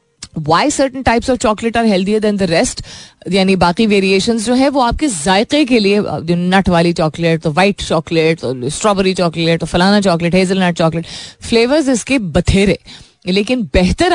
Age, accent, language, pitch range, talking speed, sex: 30-49, native, Hindi, 160-220 Hz, 120 wpm, female